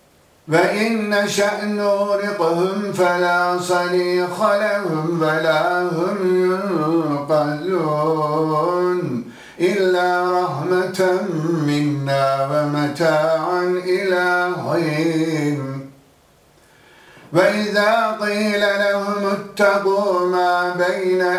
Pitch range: 160-185 Hz